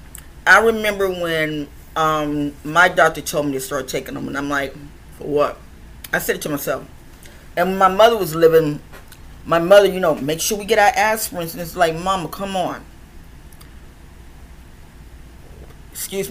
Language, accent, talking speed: English, American, 160 wpm